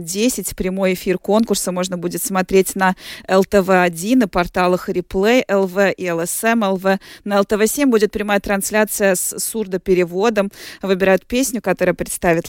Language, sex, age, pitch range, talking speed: Russian, female, 20-39, 175-200 Hz, 130 wpm